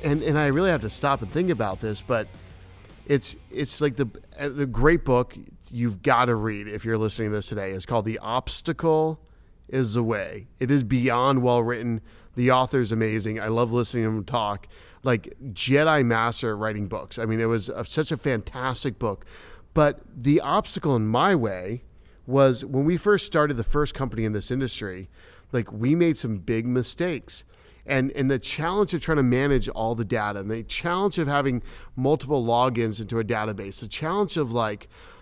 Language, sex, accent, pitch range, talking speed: English, male, American, 110-145 Hz, 190 wpm